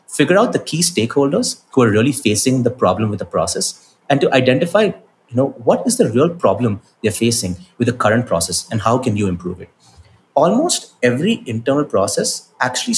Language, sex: English, male